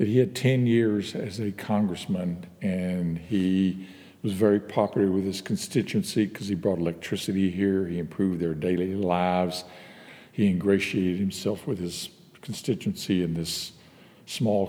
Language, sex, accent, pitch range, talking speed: English, male, American, 95-110 Hz, 140 wpm